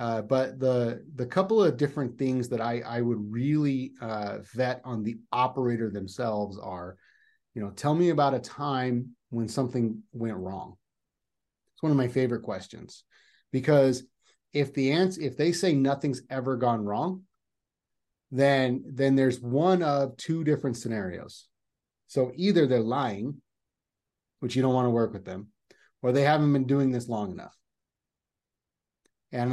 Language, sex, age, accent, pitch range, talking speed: English, male, 30-49, American, 120-145 Hz, 155 wpm